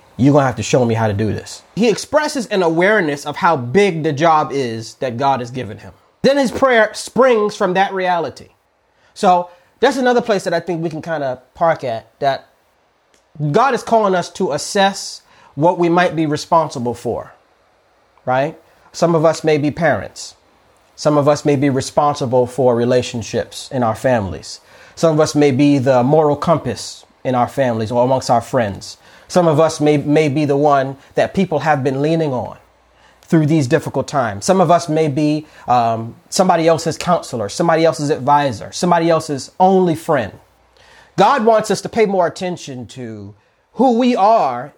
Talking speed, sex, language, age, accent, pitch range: 185 wpm, male, English, 30-49, American, 135-180 Hz